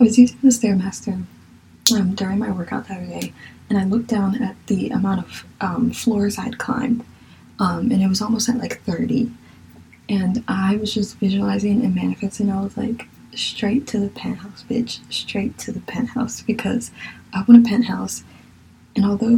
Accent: American